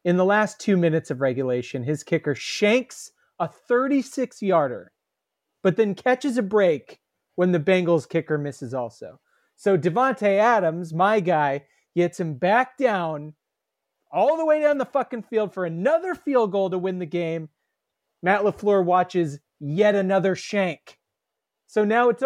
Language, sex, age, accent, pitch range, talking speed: English, male, 30-49, American, 175-245 Hz, 150 wpm